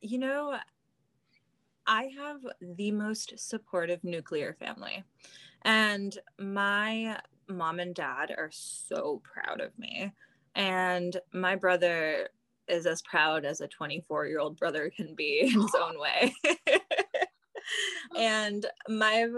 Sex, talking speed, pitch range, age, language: female, 120 wpm, 175-225 Hz, 20-39, English